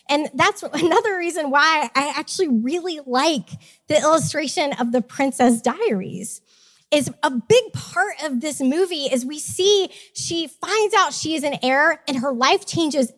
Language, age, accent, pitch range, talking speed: English, 20-39, American, 240-320 Hz, 165 wpm